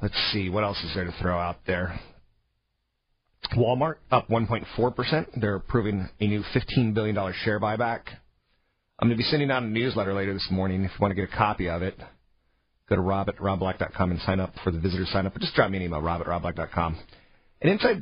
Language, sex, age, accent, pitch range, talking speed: English, male, 40-59, American, 95-120 Hz, 215 wpm